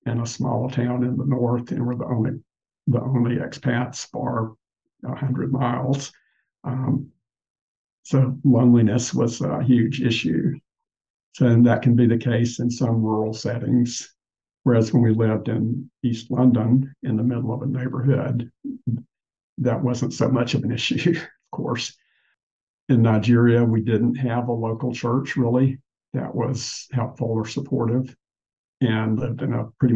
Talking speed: 150 wpm